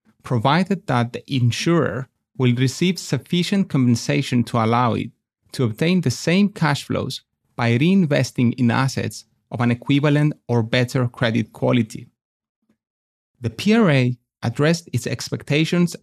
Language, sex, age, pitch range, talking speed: English, male, 30-49, 120-155 Hz, 125 wpm